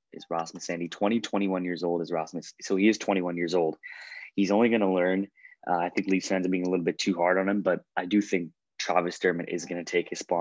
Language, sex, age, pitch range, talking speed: English, male, 20-39, 90-100 Hz, 265 wpm